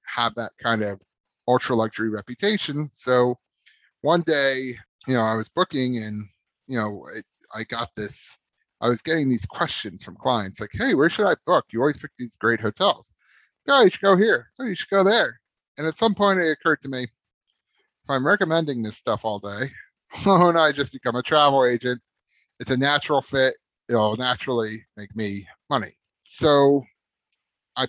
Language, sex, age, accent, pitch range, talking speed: English, male, 30-49, American, 110-140 Hz, 185 wpm